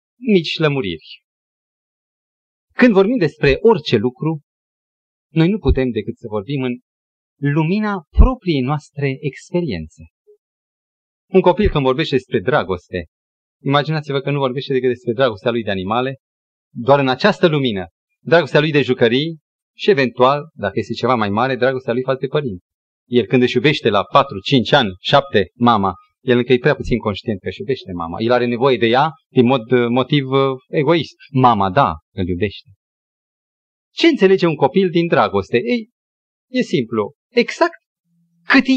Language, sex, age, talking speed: Romanian, male, 30-49, 145 wpm